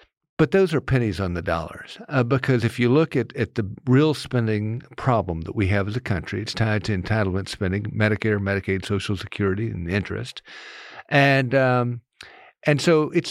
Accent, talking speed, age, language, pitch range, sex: American, 180 wpm, 50-69, English, 110-140 Hz, male